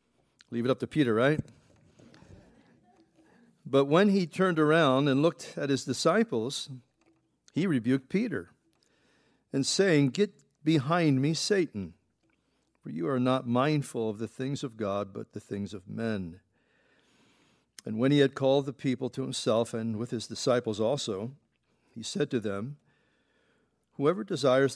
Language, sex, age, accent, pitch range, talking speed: English, male, 50-69, American, 115-150 Hz, 145 wpm